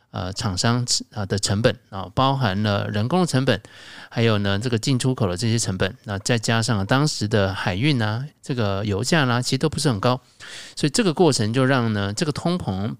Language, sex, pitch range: Chinese, male, 105-140 Hz